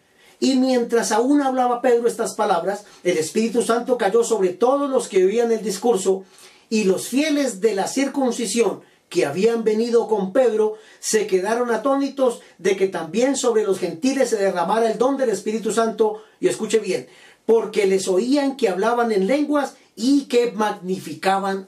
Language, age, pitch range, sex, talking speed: Spanish, 40-59, 195-255 Hz, male, 160 wpm